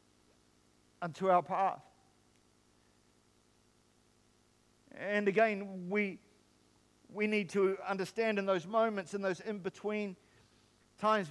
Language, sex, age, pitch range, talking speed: English, male, 50-69, 175-225 Hz, 90 wpm